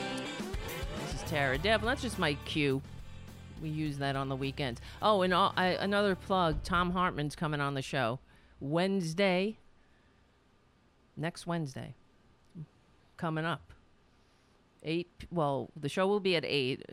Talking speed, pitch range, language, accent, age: 125 wpm, 125-175 Hz, English, American, 40-59